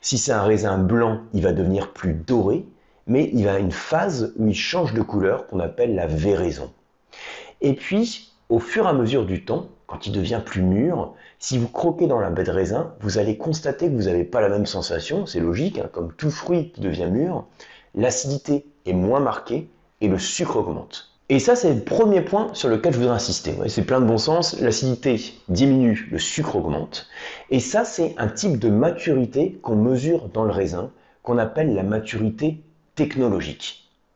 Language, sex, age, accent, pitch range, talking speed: French, male, 30-49, French, 100-155 Hz, 195 wpm